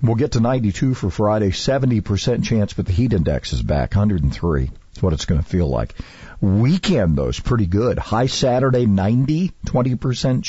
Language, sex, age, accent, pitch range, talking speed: English, male, 50-69, American, 100-135 Hz, 175 wpm